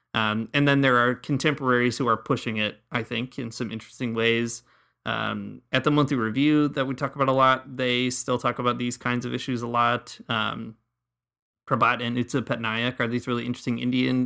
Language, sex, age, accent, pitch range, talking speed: English, male, 30-49, American, 115-130 Hz, 200 wpm